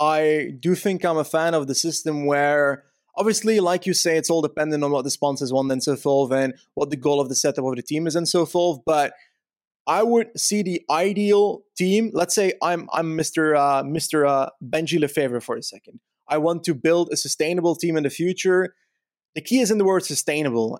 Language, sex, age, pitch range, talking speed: English, male, 20-39, 145-180 Hz, 220 wpm